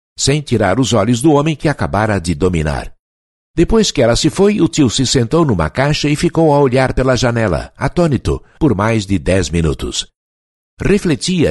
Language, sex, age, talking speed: Portuguese, male, 60-79, 175 wpm